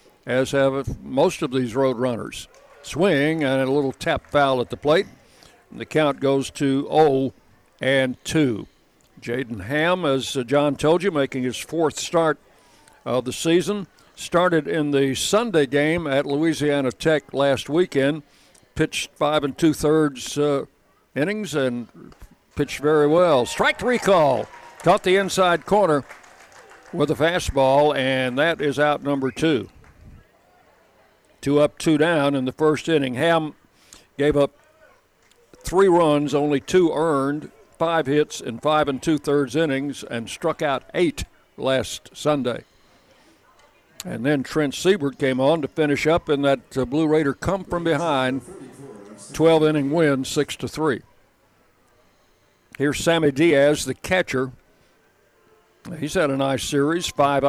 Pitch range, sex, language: 135-160 Hz, male, English